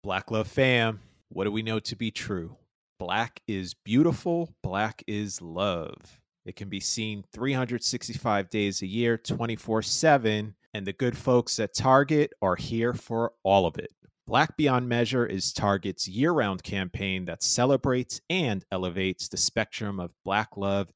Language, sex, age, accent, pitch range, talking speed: English, male, 30-49, American, 100-130 Hz, 150 wpm